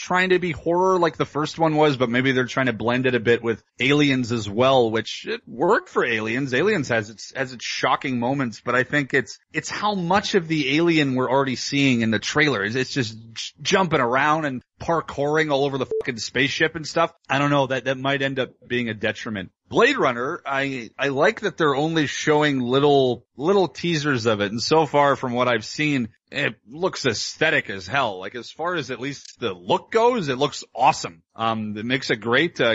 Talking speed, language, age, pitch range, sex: 215 wpm, English, 30-49, 115-140 Hz, male